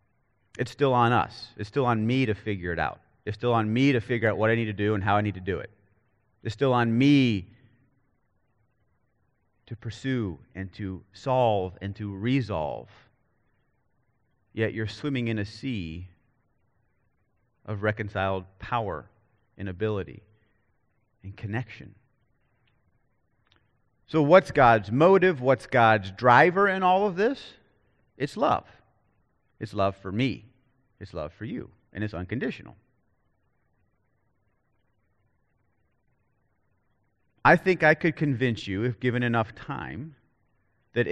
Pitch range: 105-130 Hz